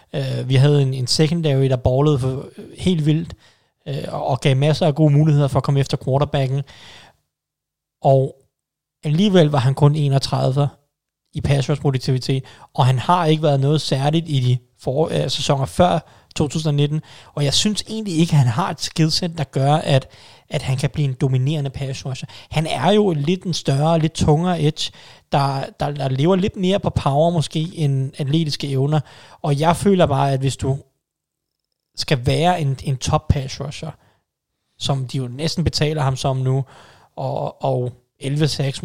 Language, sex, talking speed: Danish, male, 175 wpm